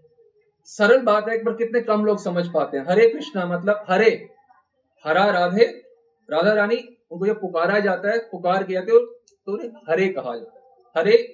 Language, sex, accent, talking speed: Hindi, male, native, 180 wpm